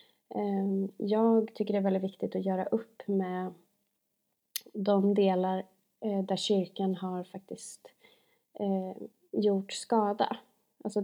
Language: Swedish